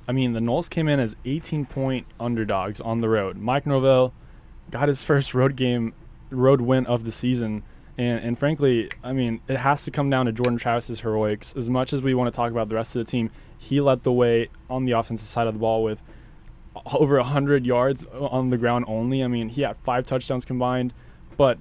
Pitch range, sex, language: 120-140 Hz, male, English